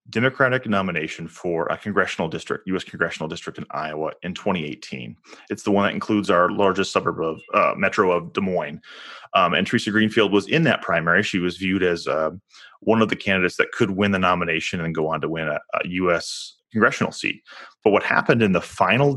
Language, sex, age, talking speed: English, male, 30-49, 205 wpm